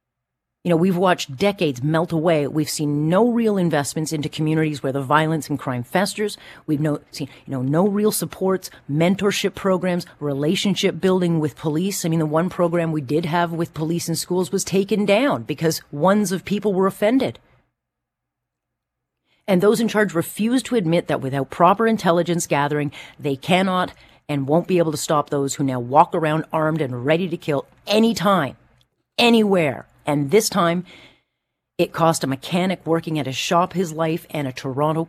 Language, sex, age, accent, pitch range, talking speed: English, female, 40-59, American, 145-180 Hz, 175 wpm